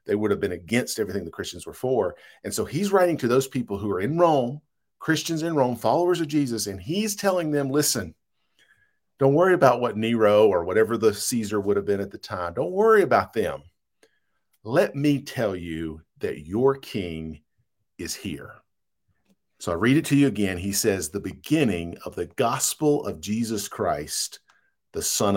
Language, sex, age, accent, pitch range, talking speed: English, male, 50-69, American, 100-135 Hz, 185 wpm